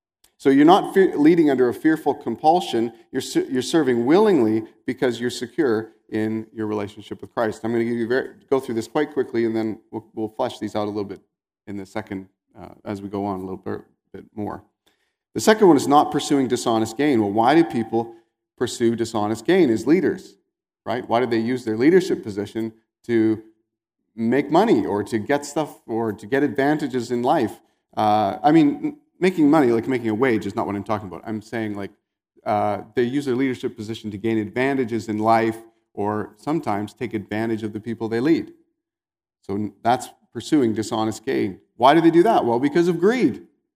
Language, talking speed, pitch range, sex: English, 195 wpm, 110-155 Hz, male